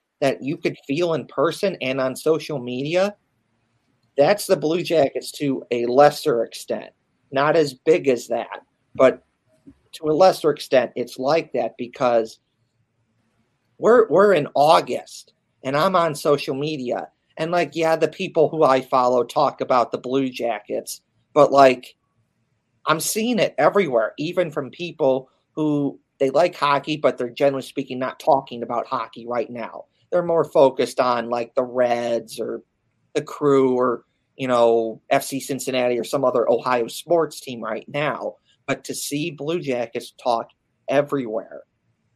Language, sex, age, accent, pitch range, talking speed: English, male, 40-59, American, 120-160 Hz, 150 wpm